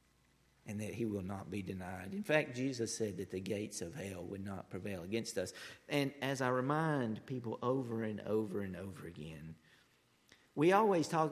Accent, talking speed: American, 185 wpm